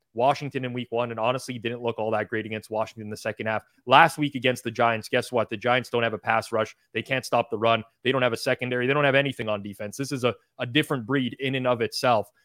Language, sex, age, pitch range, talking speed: English, male, 20-39, 110-130 Hz, 275 wpm